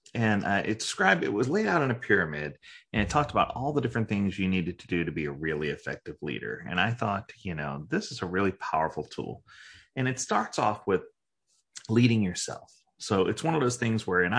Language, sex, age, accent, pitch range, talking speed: English, male, 30-49, American, 90-115 Hz, 230 wpm